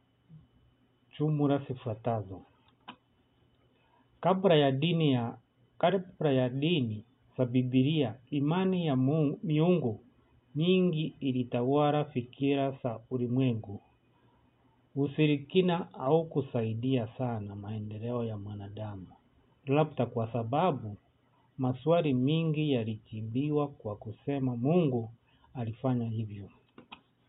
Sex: male